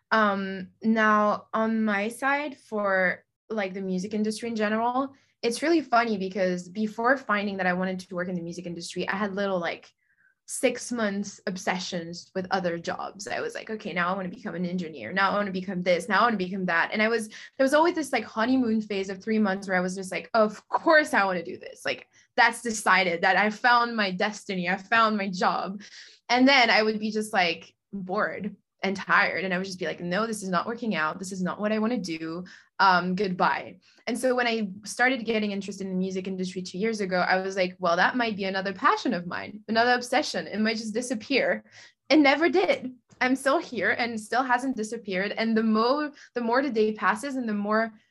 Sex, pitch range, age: female, 190-240 Hz, 20-39